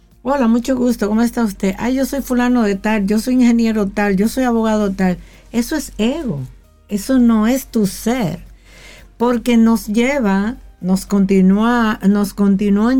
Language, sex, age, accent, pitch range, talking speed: Spanish, female, 50-69, American, 180-230 Hz, 160 wpm